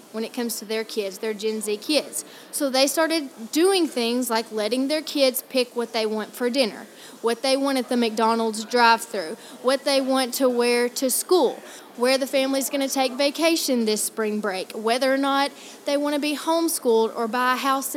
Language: English